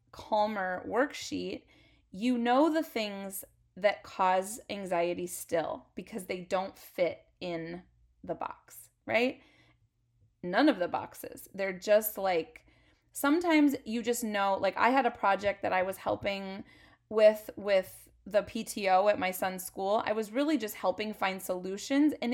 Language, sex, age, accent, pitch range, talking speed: English, female, 20-39, American, 185-245 Hz, 145 wpm